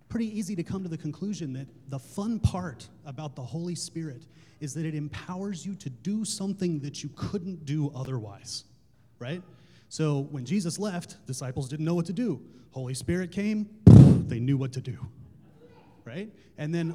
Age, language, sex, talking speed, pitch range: 30-49, English, male, 175 wpm, 130-185 Hz